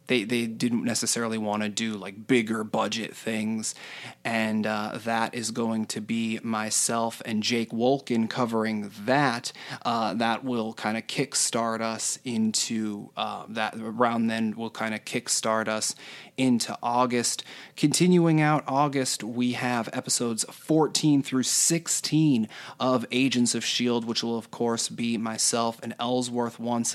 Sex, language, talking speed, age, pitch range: male, English, 145 wpm, 20-39, 115-140 Hz